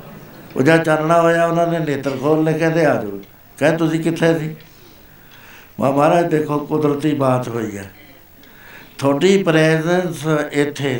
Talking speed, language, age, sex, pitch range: 125 wpm, Punjabi, 60-79, male, 135-165 Hz